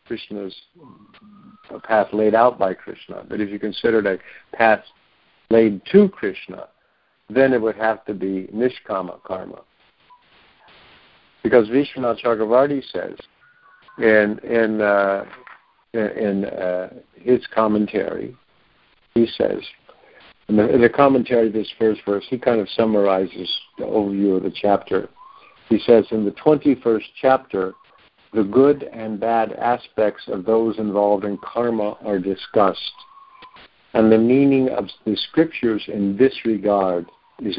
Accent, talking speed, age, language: American, 135 wpm, 60-79, English